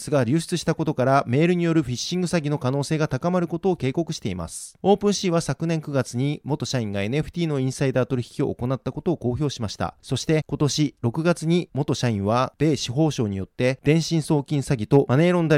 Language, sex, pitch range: Japanese, male, 130-165 Hz